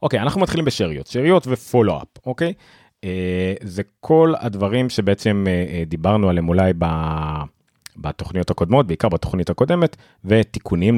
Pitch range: 95-125 Hz